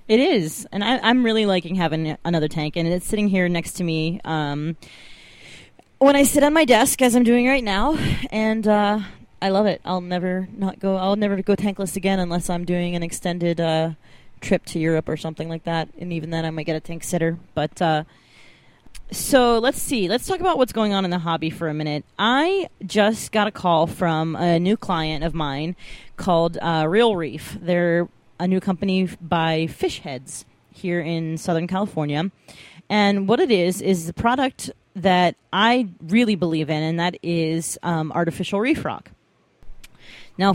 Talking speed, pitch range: 190 wpm, 165-205 Hz